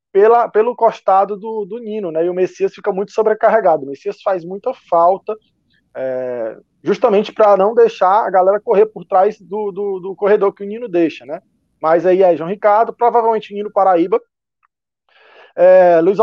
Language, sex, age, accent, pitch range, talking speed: Portuguese, male, 20-39, Brazilian, 170-210 Hz, 180 wpm